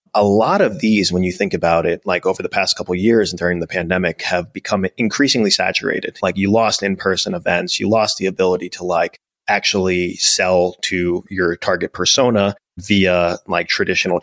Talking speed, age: 185 wpm, 30-49